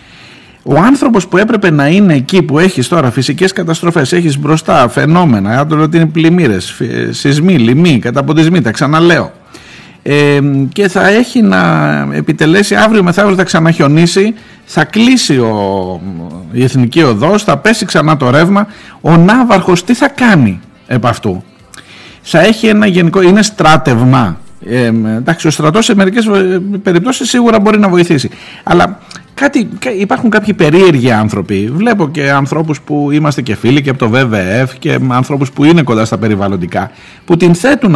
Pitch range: 115-185 Hz